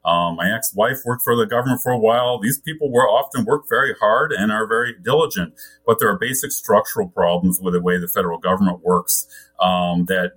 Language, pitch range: English, 95-125 Hz